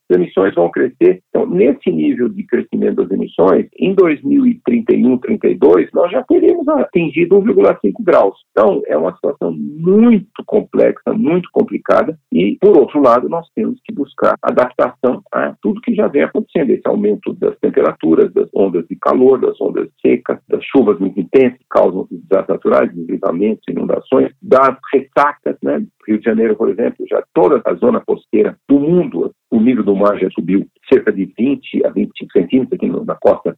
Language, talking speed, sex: Portuguese, 170 wpm, male